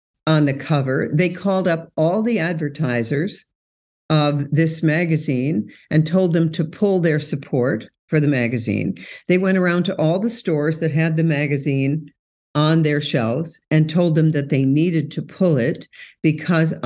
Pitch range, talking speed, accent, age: 140-170 Hz, 165 wpm, American, 50-69